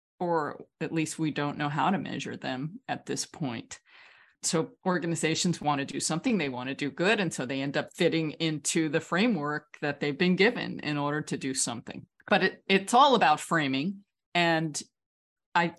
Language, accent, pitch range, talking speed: English, American, 150-205 Hz, 190 wpm